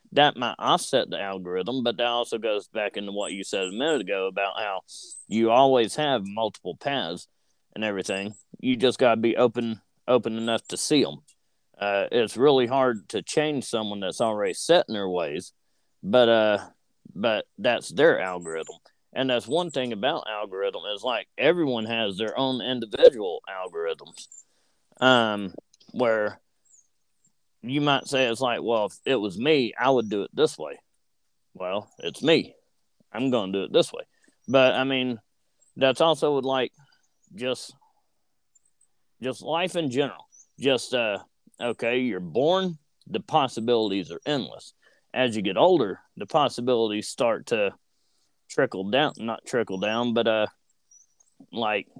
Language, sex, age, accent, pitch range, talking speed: English, male, 30-49, American, 110-140 Hz, 155 wpm